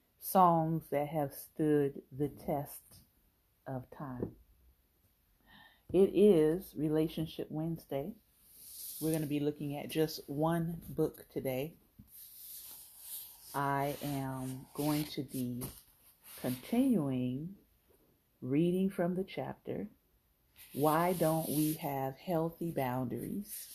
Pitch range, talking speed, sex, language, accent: 130-160 Hz, 95 wpm, female, English, American